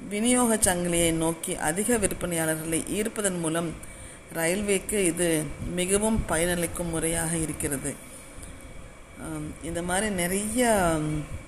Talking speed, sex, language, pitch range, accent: 85 wpm, female, Tamil, 160-190 Hz, native